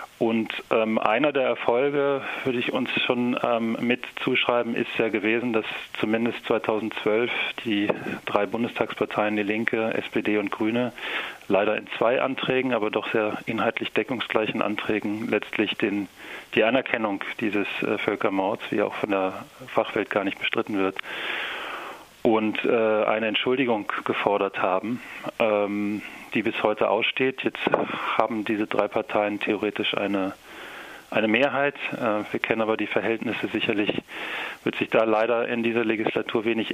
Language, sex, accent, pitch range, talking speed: German, male, German, 105-115 Hz, 135 wpm